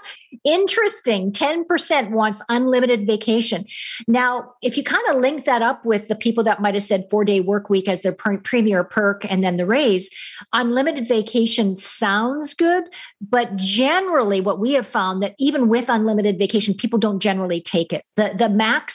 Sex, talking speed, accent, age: female, 170 wpm, American, 50-69